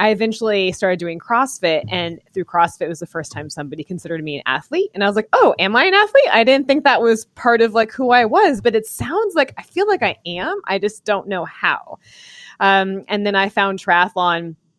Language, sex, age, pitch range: English, female, 20-39, 155-195 Hz